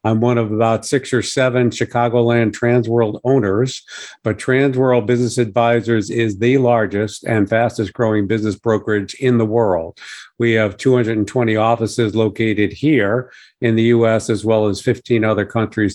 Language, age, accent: English, 50-69, American